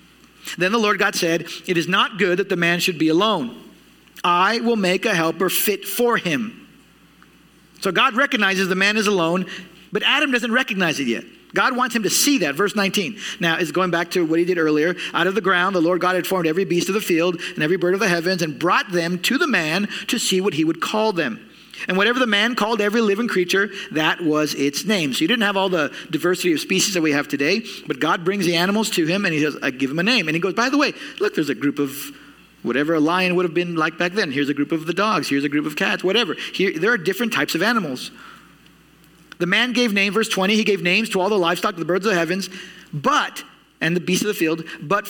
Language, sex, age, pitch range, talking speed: English, male, 40-59, 170-215 Hz, 255 wpm